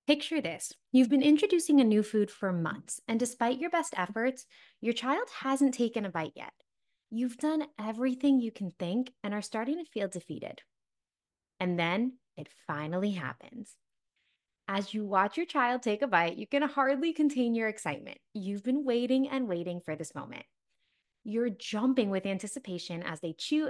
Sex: female